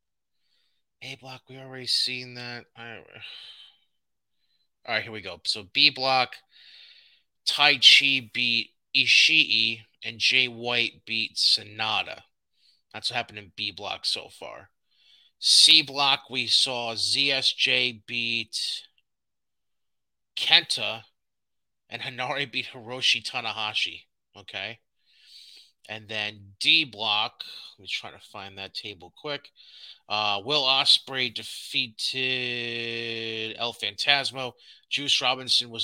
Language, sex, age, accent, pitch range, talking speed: English, male, 30-49, American, 110-135 Hz, 110 wpm